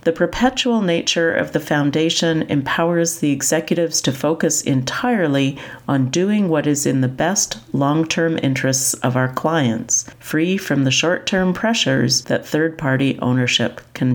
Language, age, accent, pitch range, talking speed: English, 40-59, American, 130-165 Hz, 140 wpm